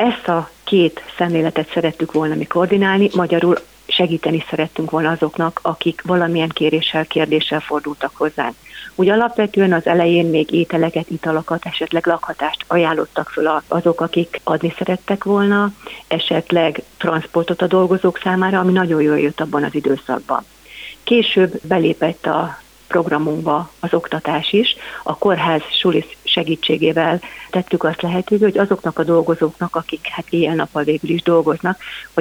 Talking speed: 135 wpm